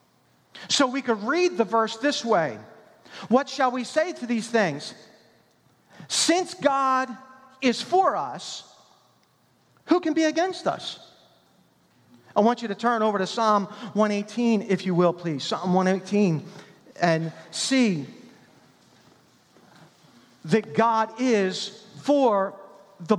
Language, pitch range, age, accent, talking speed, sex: English, 195-255 Hz, 40-59, American, 120 wpm, male